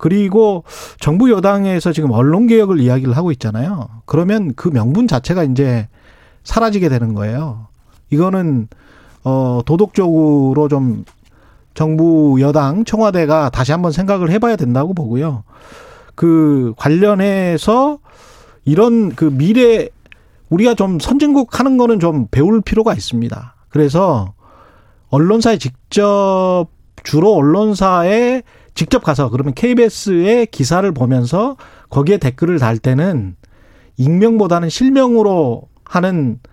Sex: male